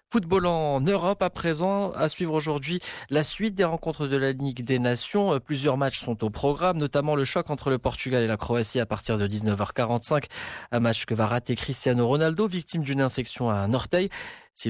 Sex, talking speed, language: male, 200 wpm, Arabic